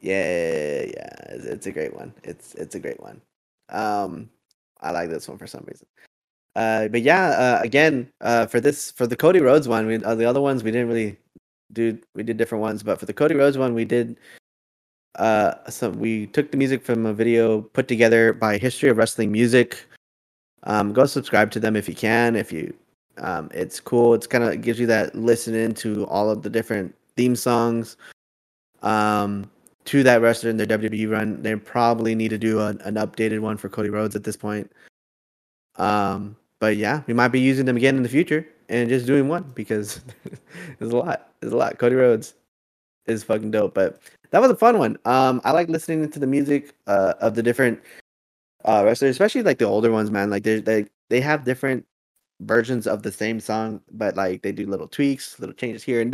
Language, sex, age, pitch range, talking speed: English, male, 20-39, 110-130 Hz, 205 wpm